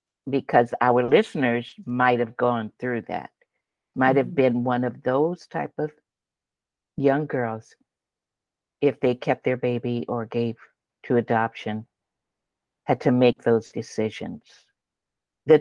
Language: English